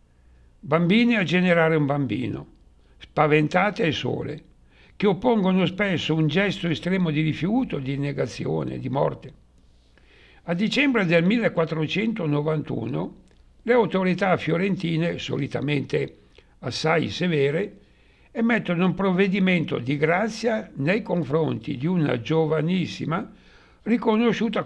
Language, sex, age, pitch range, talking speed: Italian, male, 60-79, 140-180 Hz, 100 wpm